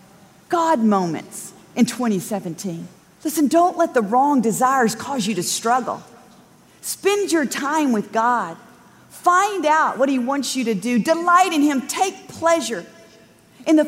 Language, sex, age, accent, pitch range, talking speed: English, female, 40-59, American, 240-350 Hz, 145 wpm